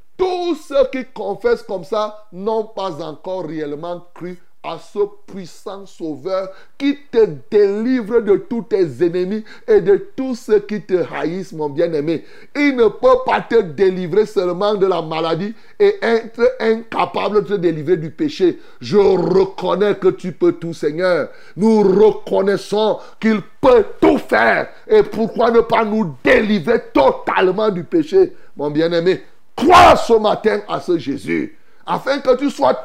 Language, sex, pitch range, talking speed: French, male, 175-260 Hz, 150 wpm